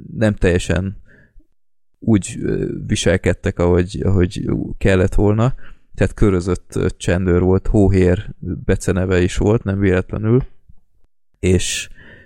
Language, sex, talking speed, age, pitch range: Hungarian, male, 95 wpm, 20-39, 85-100 Hz